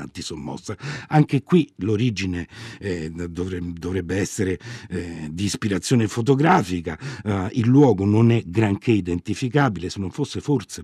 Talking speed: 125 wpm